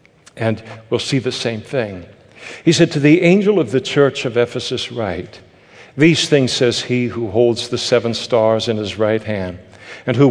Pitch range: 115-130 Hz